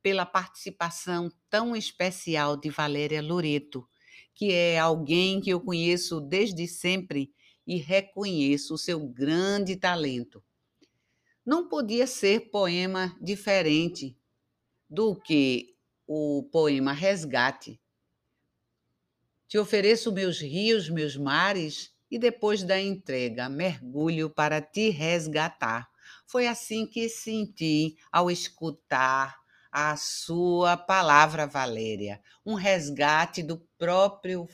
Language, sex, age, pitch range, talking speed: Portuguese, female, 60-79, 145-190 Hz, 105 wpm